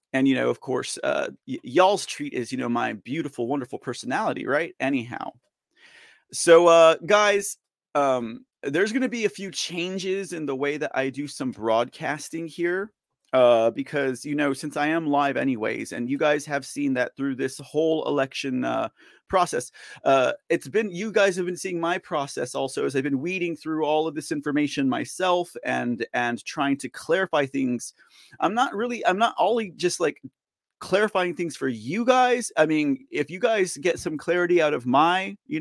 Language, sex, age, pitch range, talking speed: English, male, 30-49, 145-200 Hz, 185 wpm